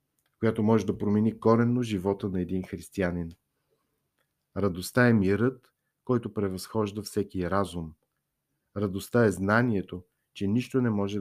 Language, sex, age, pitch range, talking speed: Bulgarian, male, 50-69, 95-120 Hz, 125 wpm